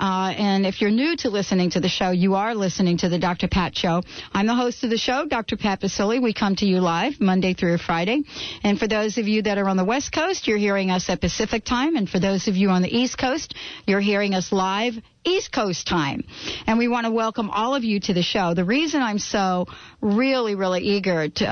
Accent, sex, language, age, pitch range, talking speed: American, female, English, 50-69, 185-230 Hz, 245 wpm